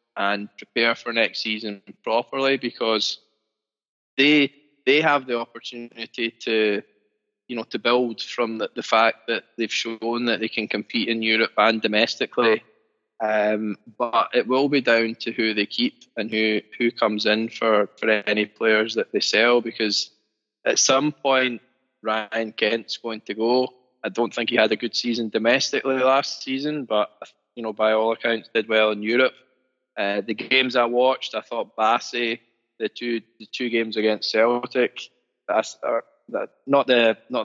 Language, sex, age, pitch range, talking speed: English, male, 20-39, 110-130 Hz, 170 wpm